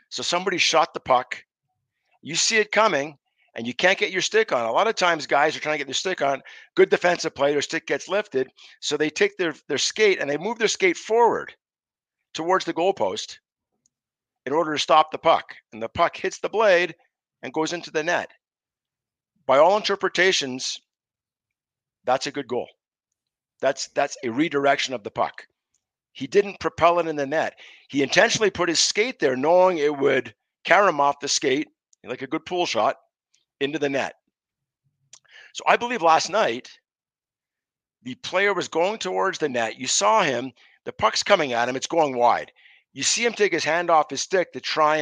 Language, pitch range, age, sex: English, 140-190 Hz, 50-69, male